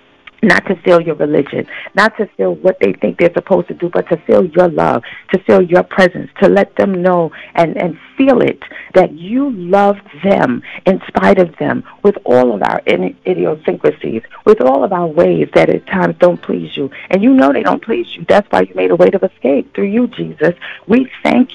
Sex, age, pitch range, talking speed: female, 40-59, 180-240 Hz, 210 wpm